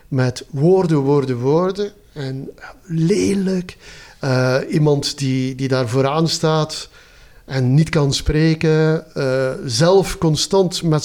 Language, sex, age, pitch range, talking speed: Dutch, male, 50-69, 135-170 Hz, 115 wpm